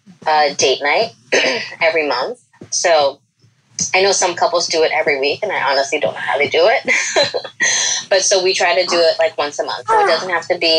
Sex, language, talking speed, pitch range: female, English, 220 wpm, 145-170 Hz